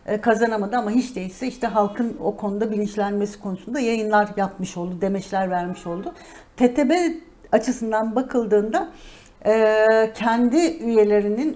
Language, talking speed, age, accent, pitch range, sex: Turkish, 110 wpm, 60-79, native, 200-250 Hz, female